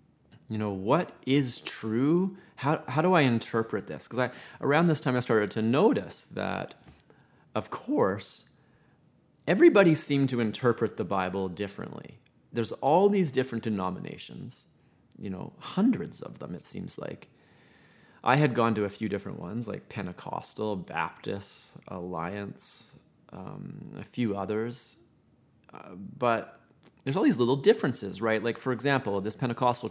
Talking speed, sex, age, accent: 145 wpm, male, 30-49, American